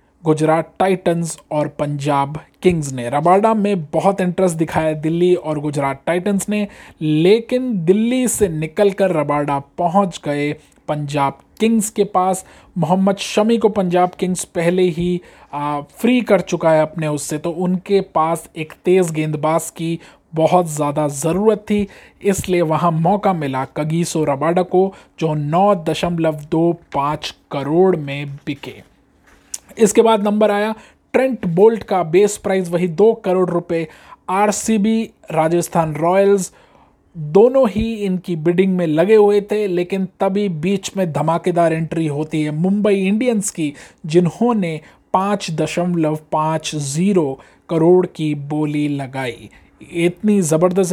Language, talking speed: Hindi, 130 wpm